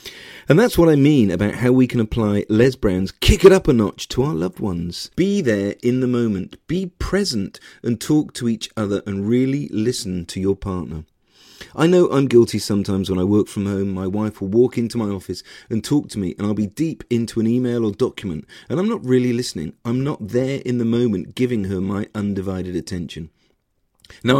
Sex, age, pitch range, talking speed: male, 40-59, 100-140 Hz, 210 wpm